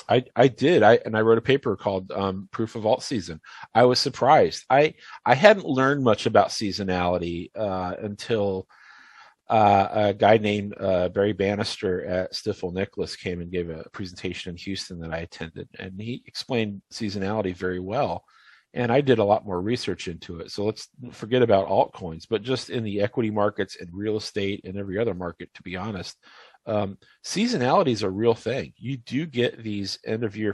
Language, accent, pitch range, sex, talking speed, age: English, American, 95-120 Hz, male, 190 wpm, 40-59